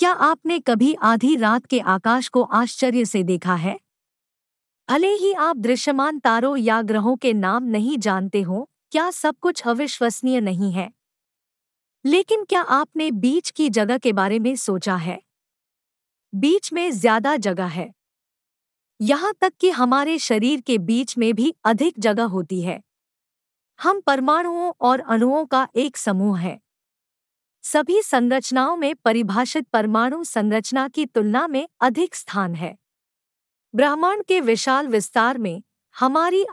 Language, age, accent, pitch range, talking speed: Hindi, 50-69, native, 225-300 Hz, 140 wpm